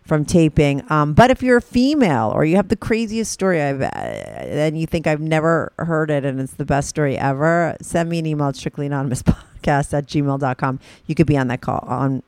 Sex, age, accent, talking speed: female, 40-59, American, 215 wpm